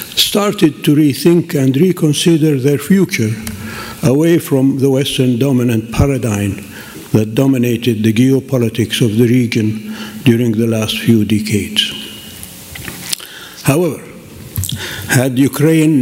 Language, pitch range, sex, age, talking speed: English, 115-150 Hz, male, 60-79, 105 wpm